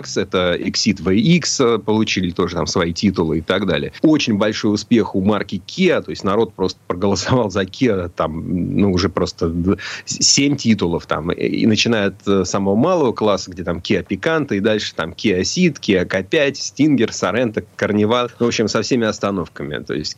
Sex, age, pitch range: male, 30-49, 95-125 Hz